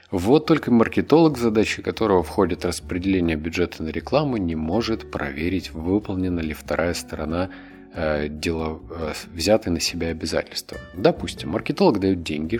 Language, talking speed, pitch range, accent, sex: Russian, 125 wpm, 80-105 Hz, native, male